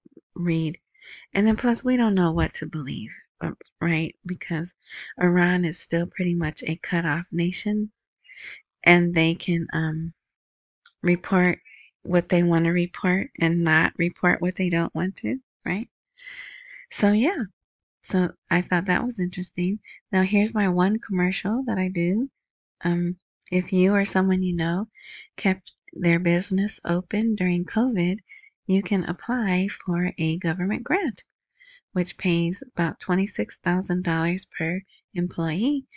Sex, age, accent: female, 30-49, American